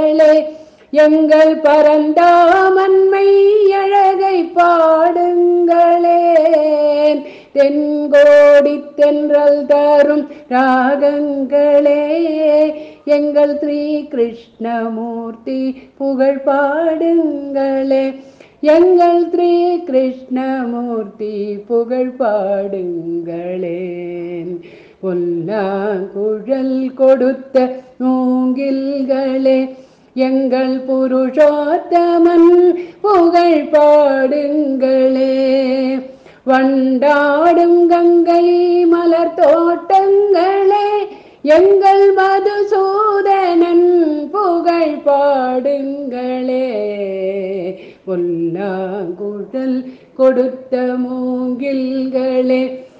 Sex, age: female, 50-69